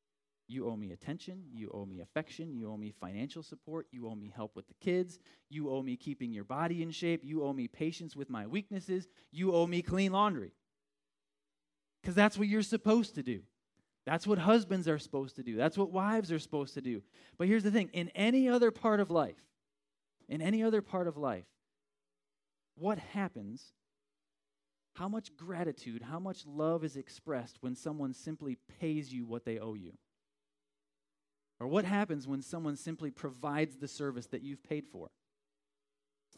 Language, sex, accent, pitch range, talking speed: English, male, American, 120-175 Hz, 180 wpm